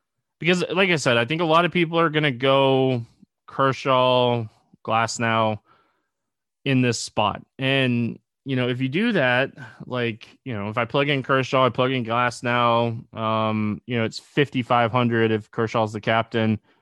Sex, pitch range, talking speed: male, 115-135 Hz, 180 wpm